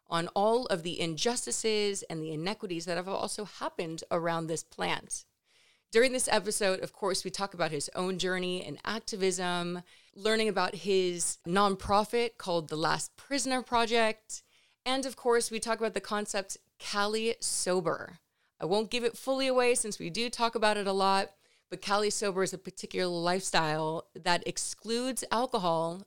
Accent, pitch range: American, 165-215 Hz